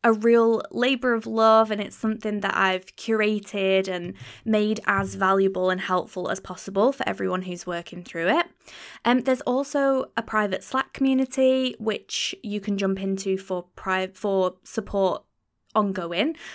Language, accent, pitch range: English, British, 190-225 Hz